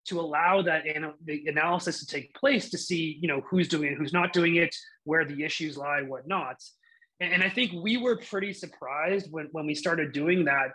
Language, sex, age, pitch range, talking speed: English, male, 30-49, 155-190 Hz, 200 wpm